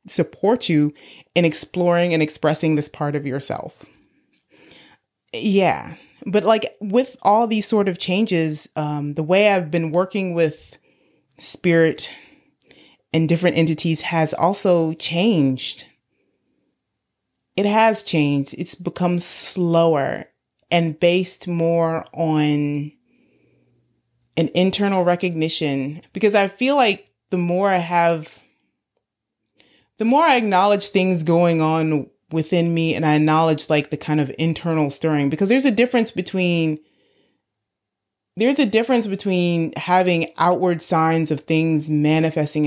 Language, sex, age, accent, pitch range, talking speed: English, female, 30-49, American, 155-185 Hz, 120 wpm